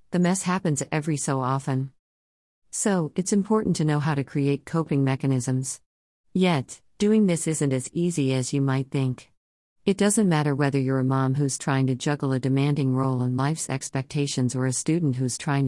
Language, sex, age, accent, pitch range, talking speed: English, female, 50-69, American, 130-170 Hz, 185 wpm